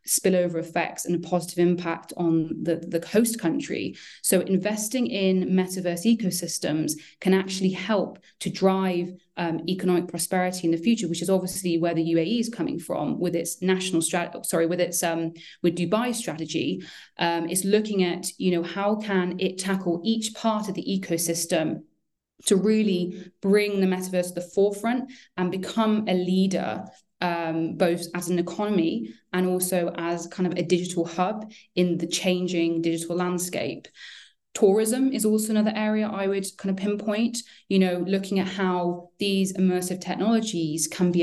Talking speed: 165 wpm